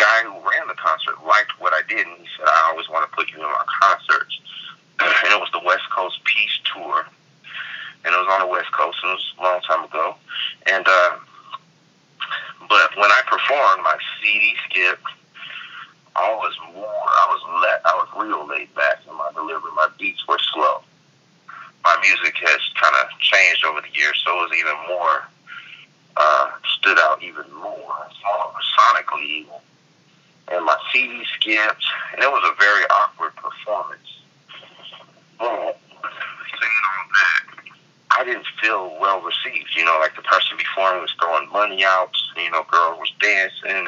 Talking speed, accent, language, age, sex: 170 wpm, American, English, 30-49, male